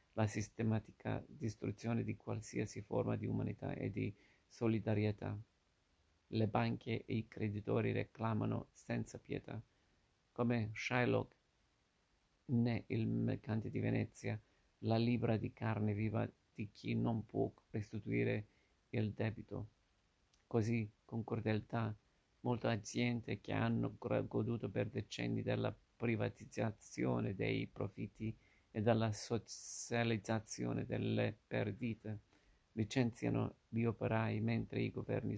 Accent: native